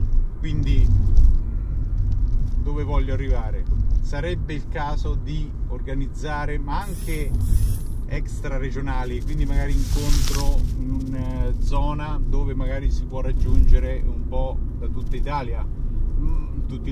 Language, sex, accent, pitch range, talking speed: Italian, male, native, 105-140 Hz, 105 wpm